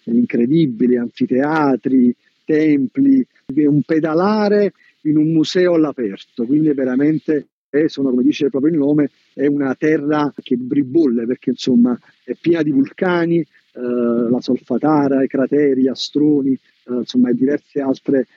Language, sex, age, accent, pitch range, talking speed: Italian, male, 50-69, native, 125-155 Hz, 135 wpm